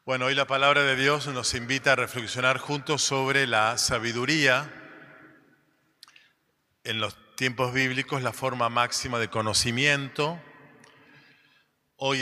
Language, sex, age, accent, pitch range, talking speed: Spanish, male, 40-59, Argentinian, 115-135 Hz, 120 wpm